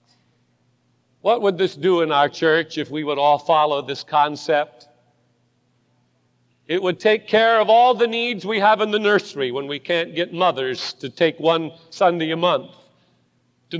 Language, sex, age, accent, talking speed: English, male, 50-69, American, 170 wpm